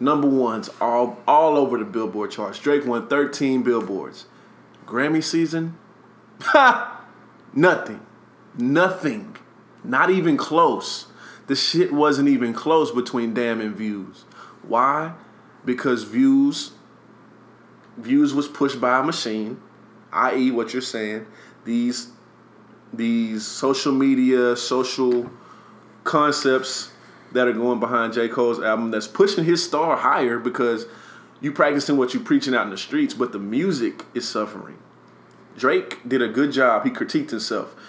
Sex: male